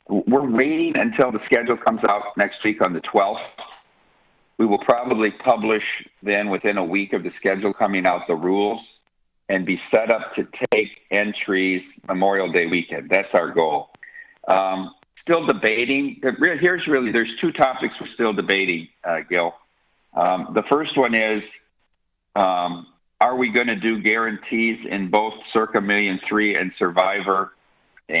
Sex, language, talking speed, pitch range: male, English, 155 wpm, 95-115 Hz